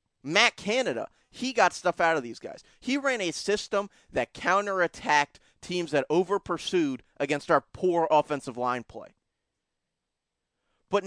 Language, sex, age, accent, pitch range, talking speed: English, male, 30-49, American, 150-195 Hz, 135 wpm